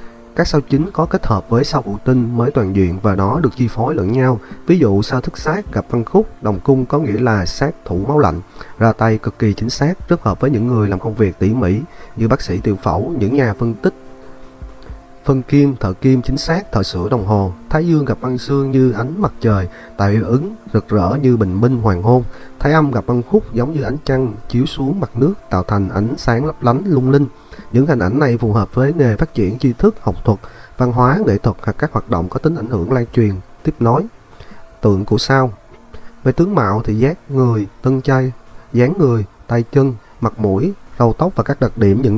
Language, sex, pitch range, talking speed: Vietnamese, male, 105-135 Hz, 235 wpm